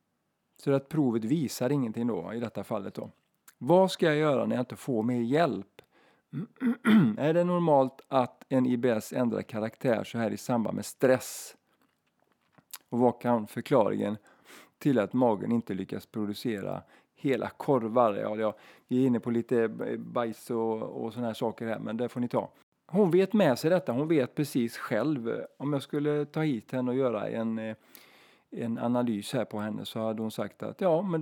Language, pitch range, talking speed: Swedish, 115-145 Hz, 180 wpm